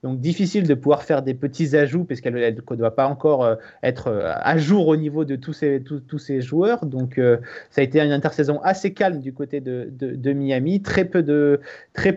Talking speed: 230 wpm